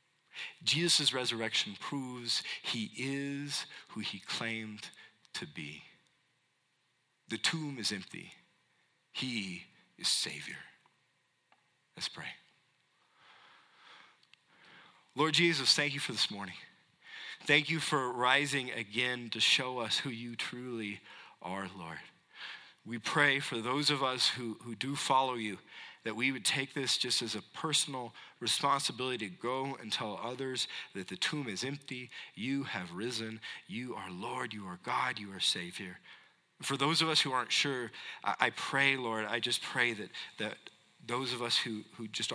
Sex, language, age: male, English, 40-59